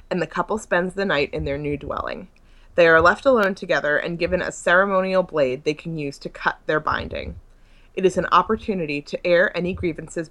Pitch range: 150-190 Hz